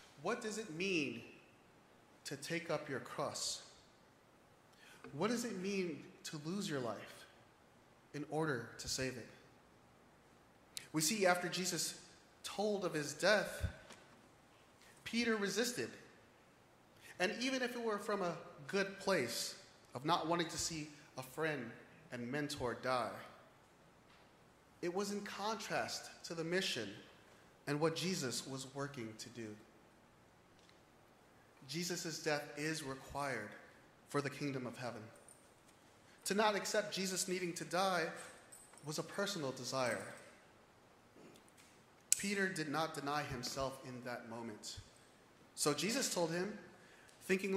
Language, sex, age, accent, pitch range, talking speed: English, male, 30-49, American, 130-185 Hz, 125 wpm